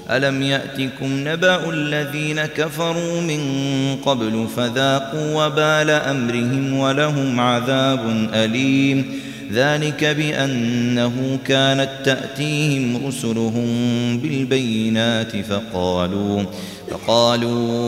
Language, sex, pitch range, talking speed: Arabic, male, 100-135 Hz, 70 wpm